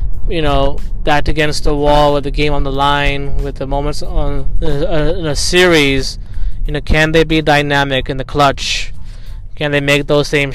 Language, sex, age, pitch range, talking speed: English, male, 20-39, 140-155 Hz, 190 wpm